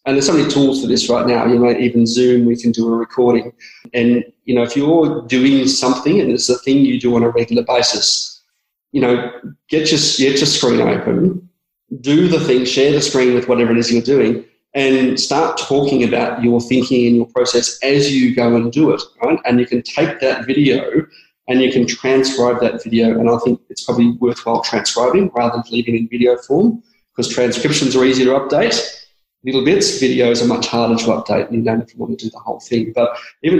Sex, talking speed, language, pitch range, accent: male, 220 wpm, English, 120-135 Hz, Australian